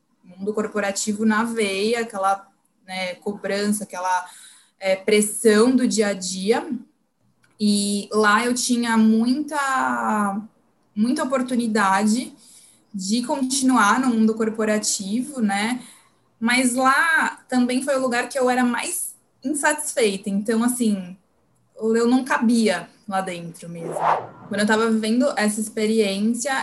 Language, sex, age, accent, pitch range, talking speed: Portuguese, female, 20-39, Brazilian, 210-250 Hz, 115 wpm